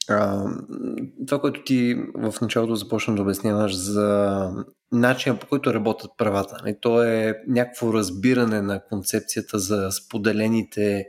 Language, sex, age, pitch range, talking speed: Bulgarian, male, 20-39, 110-140 Hz, 125 wpm